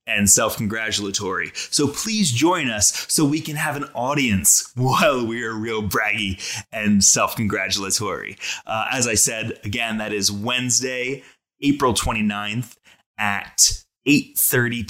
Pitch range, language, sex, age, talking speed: 105-145 Hz, English, male, 20-39, 115 wpm